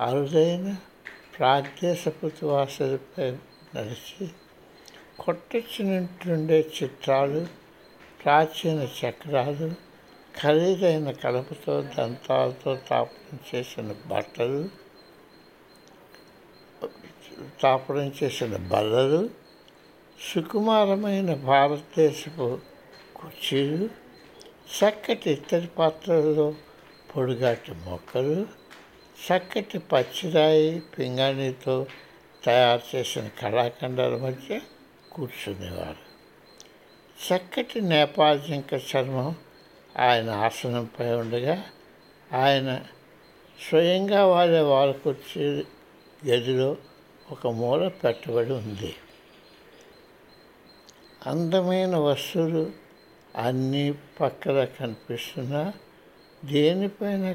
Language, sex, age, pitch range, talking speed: Telugu, male, 60-79, 130-165 Hz, 55 wpm